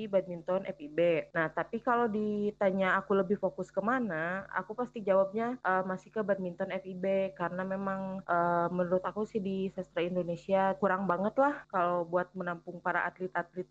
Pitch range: 175-205 Hz